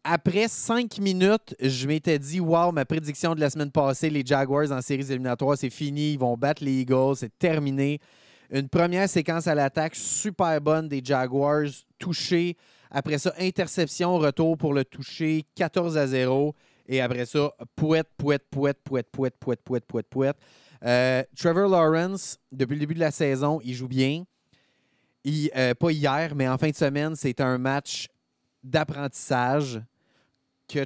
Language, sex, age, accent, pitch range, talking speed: French, male, 30-49, Canadian, 130-165 Hz, 165 wpm